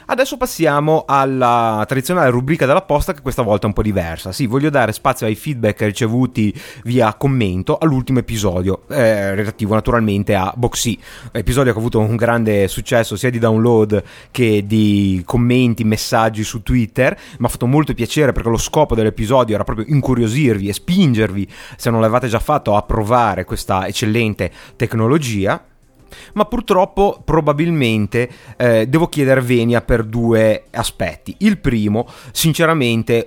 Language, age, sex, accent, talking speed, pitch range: Italian, 30-49, male, native, 150 wpm, 110-140 Hz